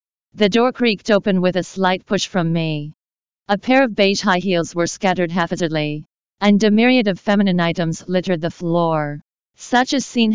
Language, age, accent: English, 40-59, American